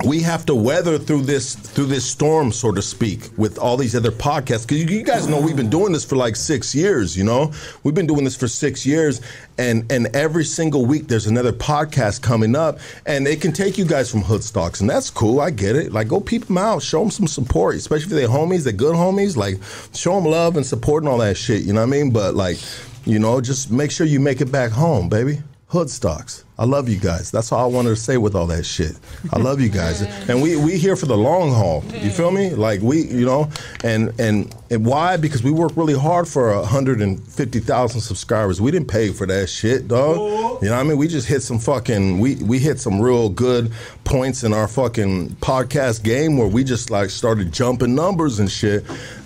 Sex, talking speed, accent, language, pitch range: male, 240 wpm, American, English, 110-150 Hz